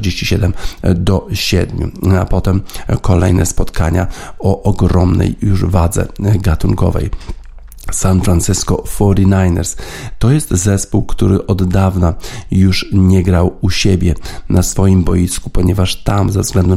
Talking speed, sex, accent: 115 wpm, male, native